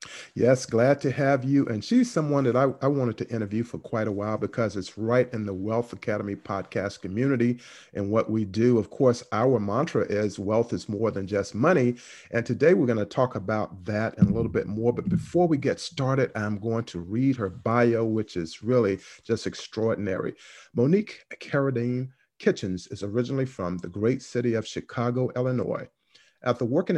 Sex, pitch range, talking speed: male, 105-130 Hz, 190 wpm